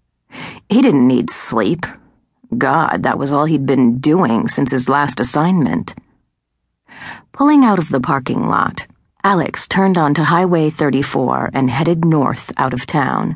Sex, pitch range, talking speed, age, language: female, 130-165 Hz, 145 wpm, 40-59, English